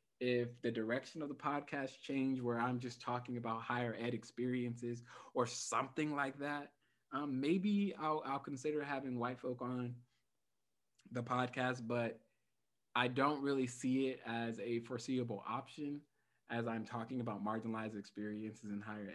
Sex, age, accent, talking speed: male, 20-39, American, 150 wpm